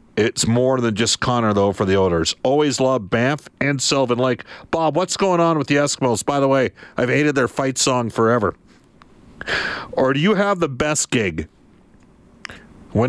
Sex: male